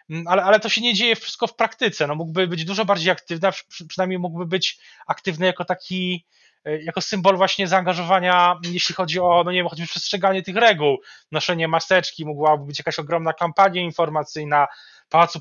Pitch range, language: 150-180 Hz, Polish